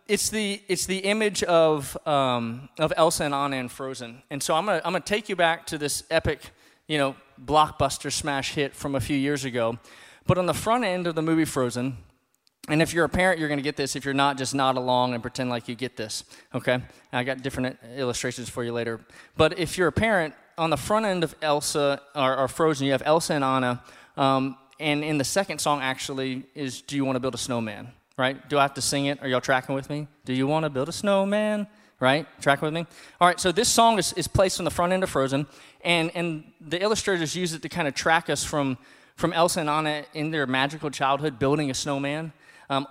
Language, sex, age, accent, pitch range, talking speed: English, male, 20-39, American, 130-160 Hz, 240 wpm